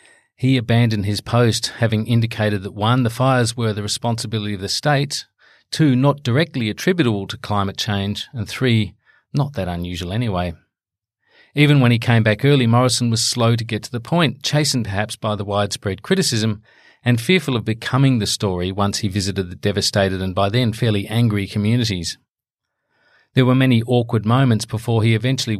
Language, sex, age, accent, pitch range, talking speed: English, male, 40-59, Australian, 100-120 Hz, 175 wpm